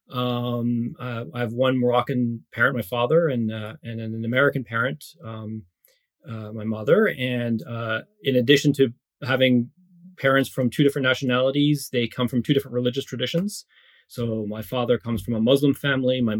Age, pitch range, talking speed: 30-49, 115-145 Hz, 165 wpm